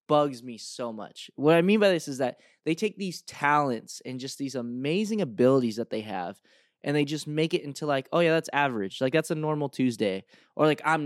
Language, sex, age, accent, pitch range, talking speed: English, male, 20-39, American, 130-170 Hz, 230 wpm